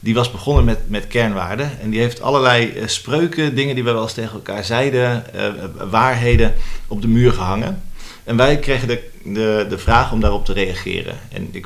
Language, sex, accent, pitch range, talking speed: Dutch, male, Dutch, 110-130 Hz, 195 wpm